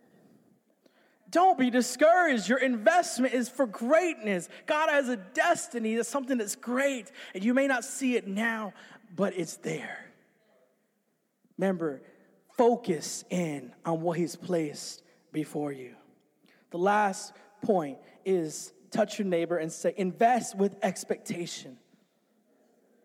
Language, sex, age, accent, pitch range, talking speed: English, male, 20-39, American, 190-250 Hz, 120 wpm